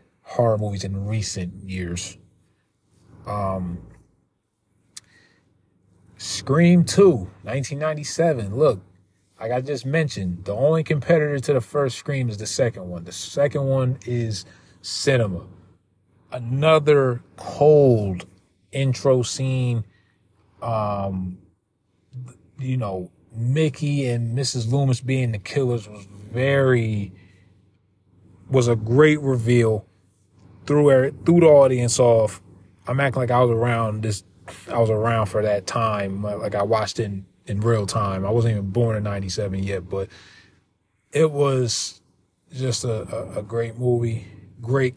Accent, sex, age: American, male, 40-59